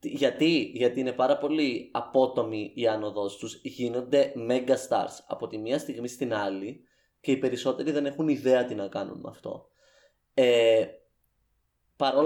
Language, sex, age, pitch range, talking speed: Greek, male, 20-39, 125-150 Hz, 150 wpm